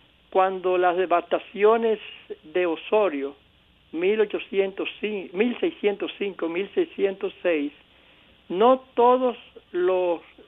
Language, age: Spanish, 60-79